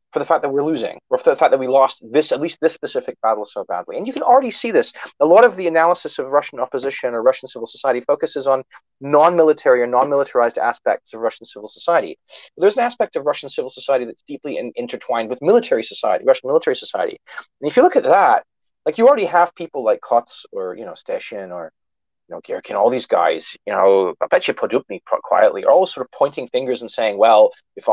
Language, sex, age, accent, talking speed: English, male, 30-49, American, 230 wpm